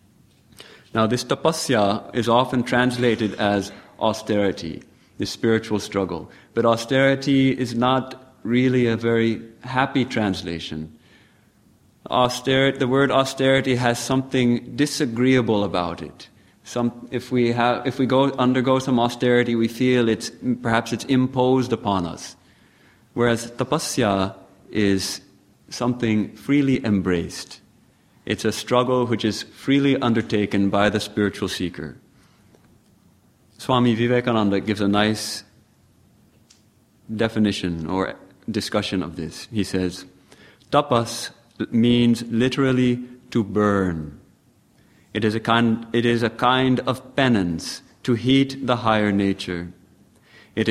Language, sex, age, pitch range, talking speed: English, male, 30-49, 105-125 Hz, 115 wpm